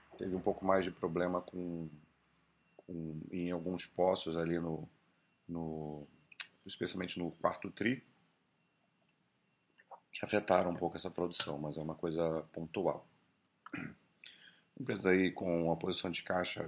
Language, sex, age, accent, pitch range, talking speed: Portuguese, male, 40-59, Brazilian, 85-95 Hz, 115 wpm